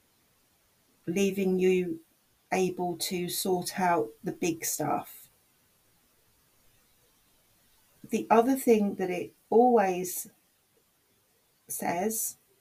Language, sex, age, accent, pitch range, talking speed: English, female, 40-59, British, 180-215 Hz, 75 wpm